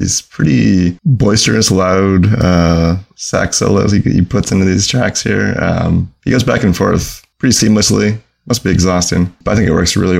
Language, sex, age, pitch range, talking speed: English, male, 20-39, 90-105 Hz, 180 wpm